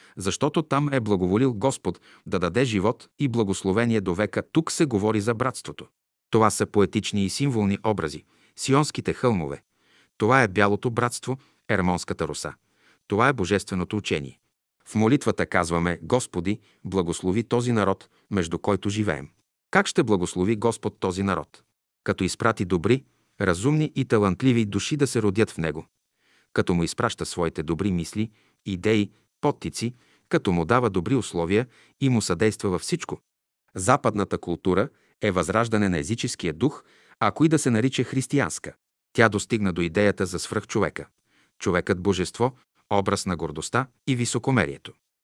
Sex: male